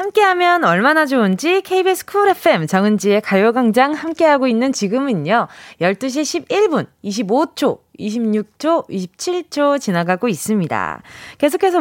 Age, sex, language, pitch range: 20-39, female, Korean, 205-320 Hz